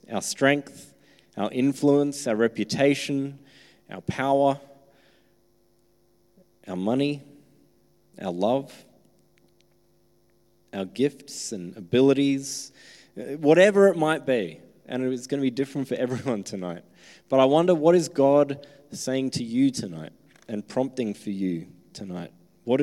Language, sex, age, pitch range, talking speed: English, male, 30-49, 115-145 Hz, 120 wpm